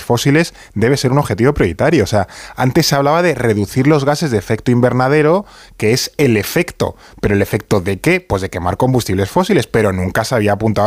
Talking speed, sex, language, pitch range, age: 205 wpm, male, Spanish, 95-130 Hz, 20-39